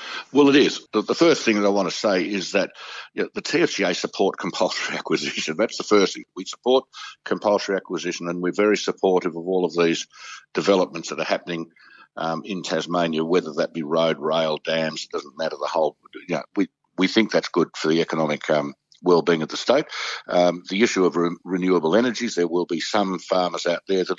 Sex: male